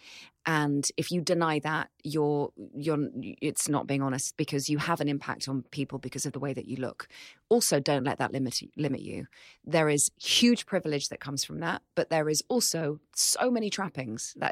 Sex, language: female, English